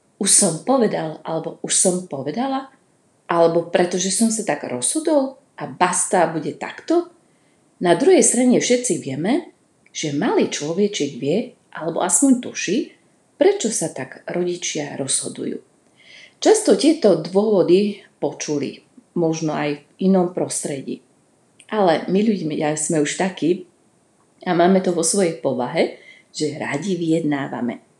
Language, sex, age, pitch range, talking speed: Slovak, female, 40-59, 150-215 Hz, 125 wpm